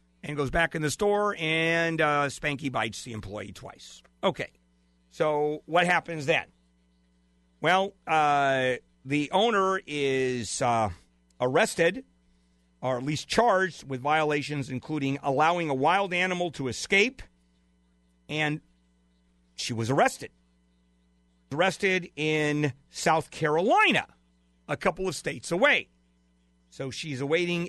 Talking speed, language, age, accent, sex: 115 wpm, English, 50-69, American, male